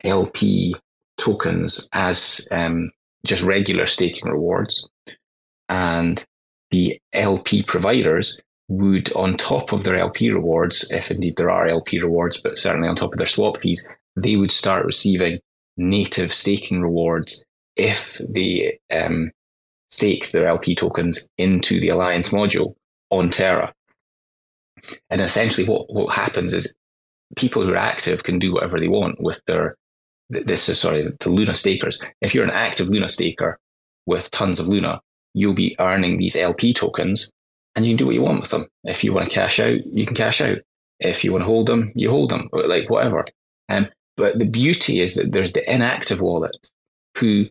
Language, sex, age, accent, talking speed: English, male, 20-39, British, 170 wpm